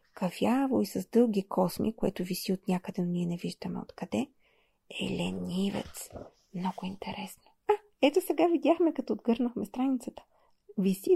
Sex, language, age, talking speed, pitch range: female, Bulgarian, 30-49, 140 wpm, 185-230 Hz